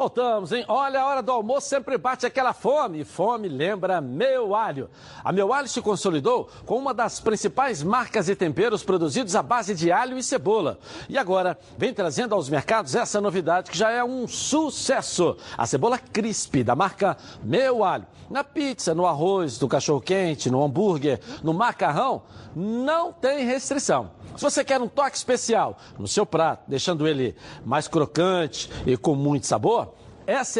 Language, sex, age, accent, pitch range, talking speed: Portuguese, male, 60-79, Brazilian, 180-255 Hz, 170 wpm